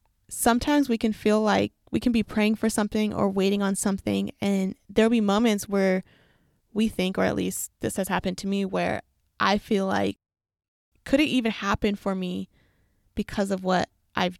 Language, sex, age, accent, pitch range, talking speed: English, female, 20-39, American, 195-230 Hz, 185 wpm